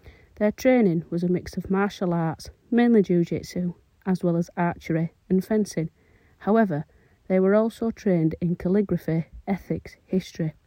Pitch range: 165-190 Hz